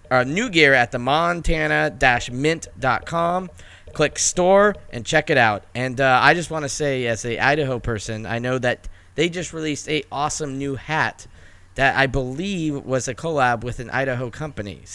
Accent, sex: American, male